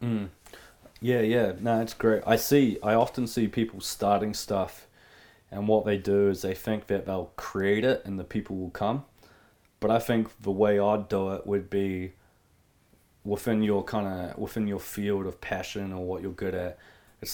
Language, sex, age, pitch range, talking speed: English, male, 20-39, 95-105 Hz, 190 wpm